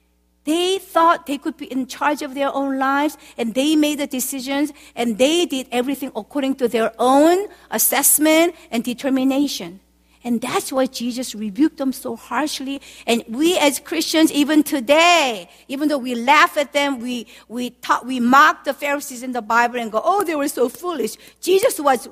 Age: 50-69